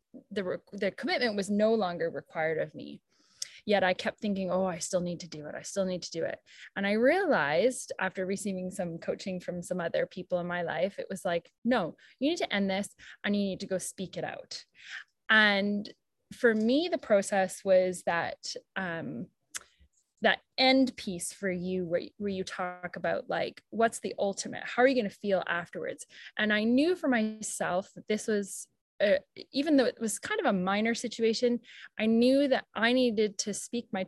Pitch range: 185-225 Hz